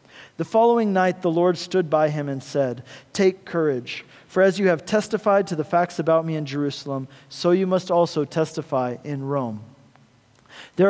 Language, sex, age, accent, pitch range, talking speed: English, male, 40-59, American, 155-195 Hz, 175 wpm